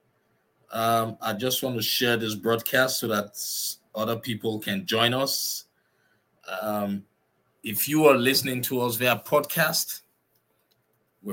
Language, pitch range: English, 115-155 Hz